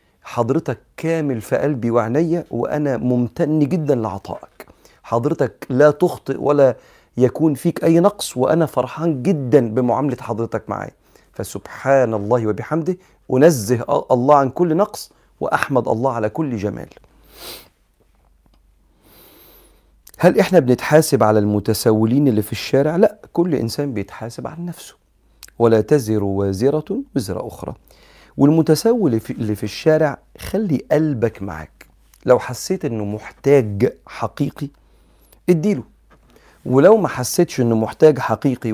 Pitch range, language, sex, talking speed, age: 110-150 Hz, Arabic, male, 115 wpm, 40-59